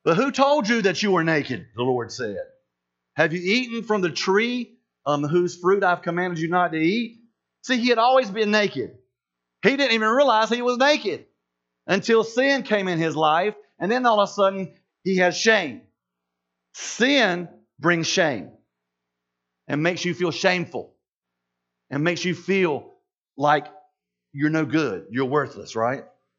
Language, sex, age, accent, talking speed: English, male, 40-59, American, 165 wpm